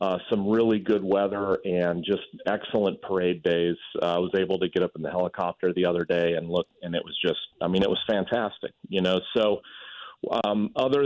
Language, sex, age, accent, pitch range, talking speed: English, male, 40-59, American, 90-105 Hz, 210 wpm